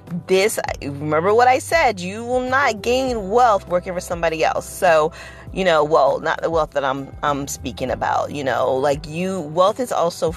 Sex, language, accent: female, English, American